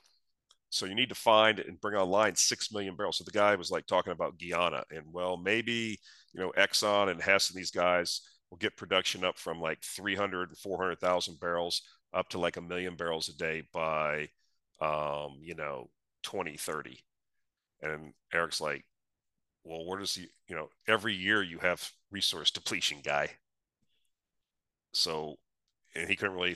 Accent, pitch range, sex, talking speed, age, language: American, 80-100 Hz, male, 170 wpm, 40-59, English